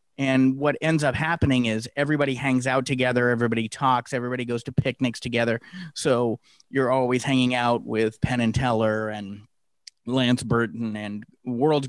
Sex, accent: male, American